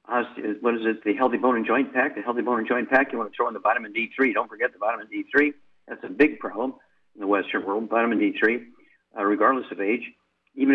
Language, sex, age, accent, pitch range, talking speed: English, male, 50-69, American, 110-145 Hz, 240 wpm